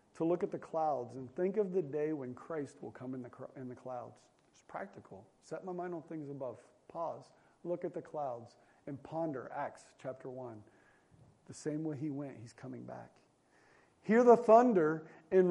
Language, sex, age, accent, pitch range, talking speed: English, male, 40-59, American, 135-190 Hz, 195 wpm